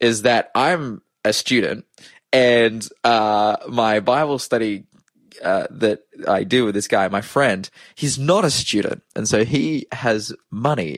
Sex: male